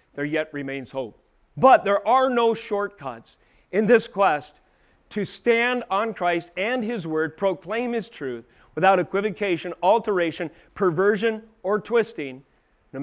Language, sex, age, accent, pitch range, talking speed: English, male, 40-59, American, 145-200 Hz, 135 wpm